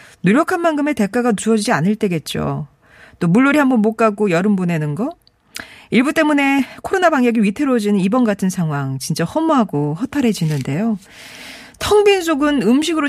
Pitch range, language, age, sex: 165-265 Hz, Korean, 40-59, female